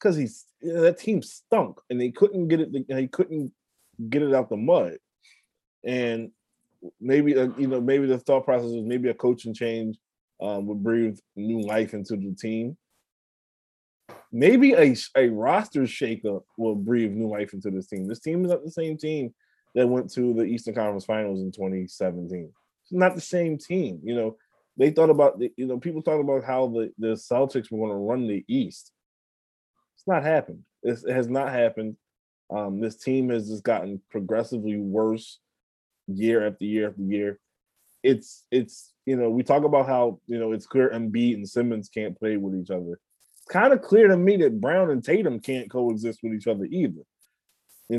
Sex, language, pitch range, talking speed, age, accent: male, English, 110-135 Hz, 185 wpm, 20-39, American